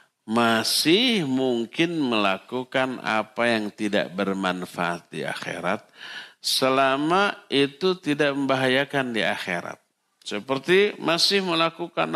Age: 50-69